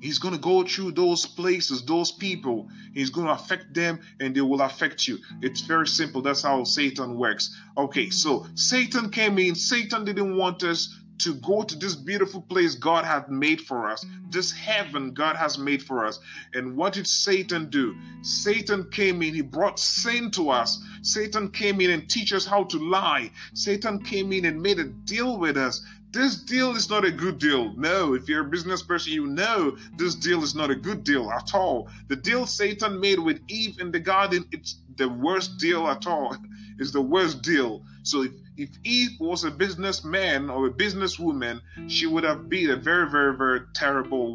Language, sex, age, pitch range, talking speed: Finnish, male, 30-49, 135-195 Hz, 200 wpm